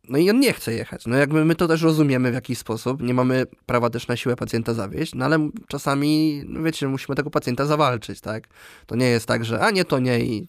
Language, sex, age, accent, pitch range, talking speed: Polish, male, 20-39, native, 120-150 Hz, 240 wpm